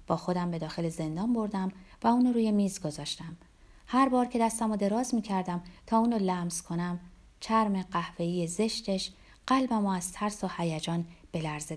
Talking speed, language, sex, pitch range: 165 wpm, Persian, female, 175-235 Hz